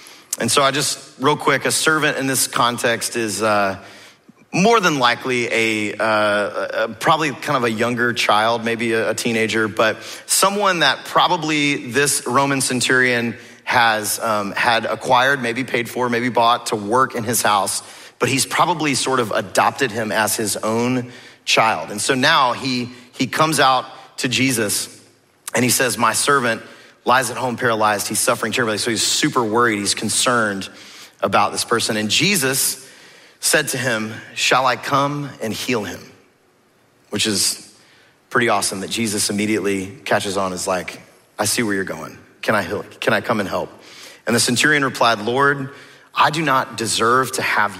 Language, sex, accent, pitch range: English, male, American, 110-130 Hz